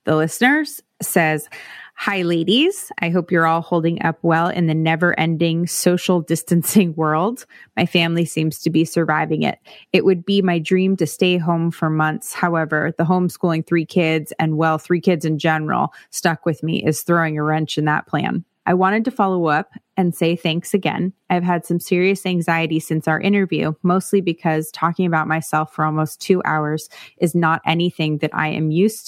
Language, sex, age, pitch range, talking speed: English, female, 20-39, 160-180 Hz, 185 wpm